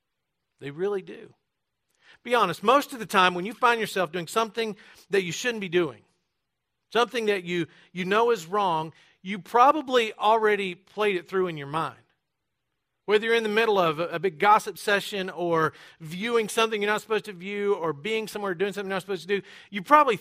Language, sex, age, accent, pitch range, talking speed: English, male, 40-59, American, 175-225 Hz, 200 wpm